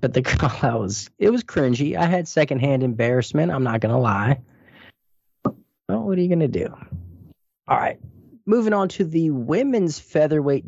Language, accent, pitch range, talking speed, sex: English, American, 120-150 Hz, 175 wpm, male